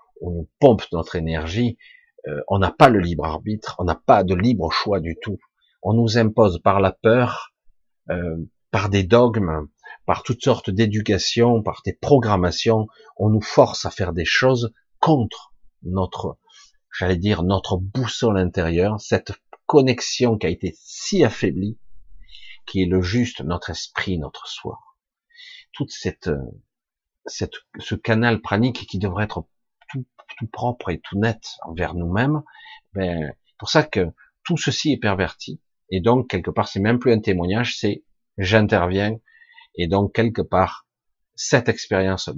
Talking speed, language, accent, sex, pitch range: 150 wpm, French, French, male, 95-125 Hz